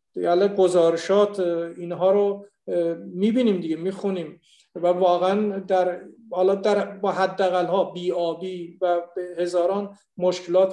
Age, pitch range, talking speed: 50-69, 180-220 Hz, 100 wpm